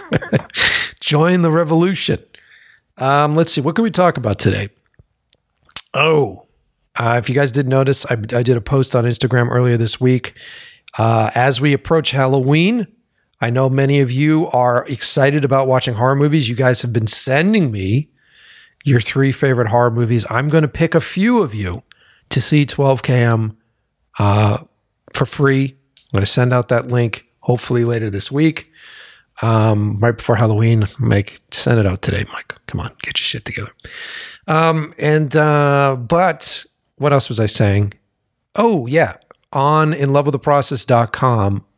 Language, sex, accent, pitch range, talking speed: English, male, American, 110-145 Hz, 160 wpm